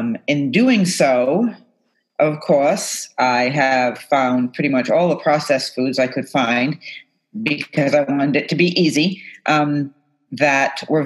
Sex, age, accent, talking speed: female, 40-59, American, 150 wpm